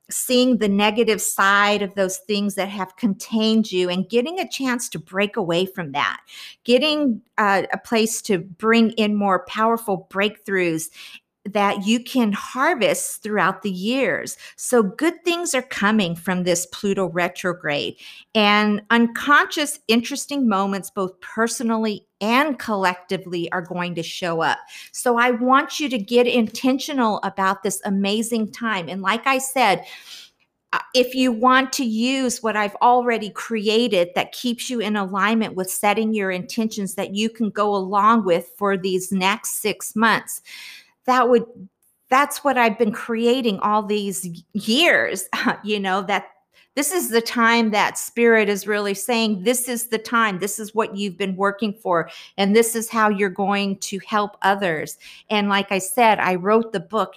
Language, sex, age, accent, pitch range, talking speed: English, female, 50-69, American, 195-240 Hz, 160 wpm